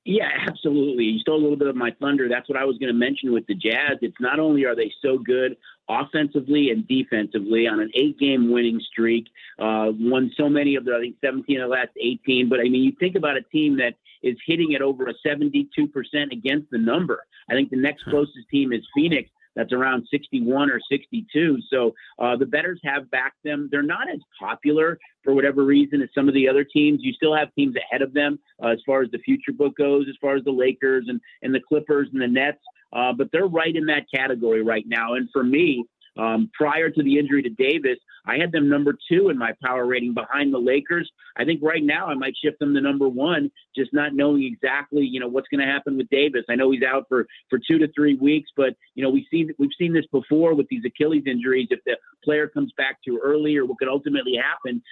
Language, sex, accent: English, male, American